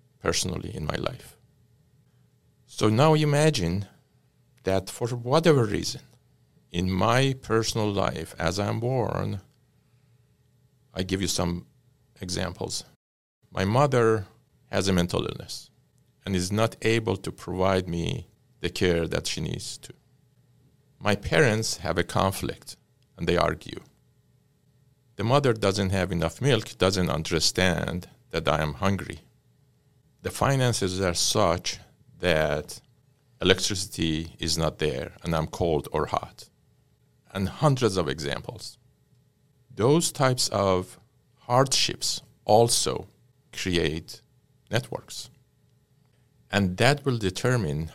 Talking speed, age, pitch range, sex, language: 115 wpm, 50-69, 95-130 Hz, male, English